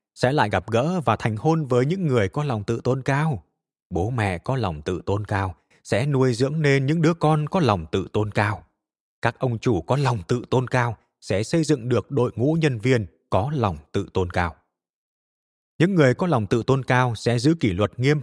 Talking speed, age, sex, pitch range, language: 220 wpm, 20-39, male, 105-140 Hz, Vietnamese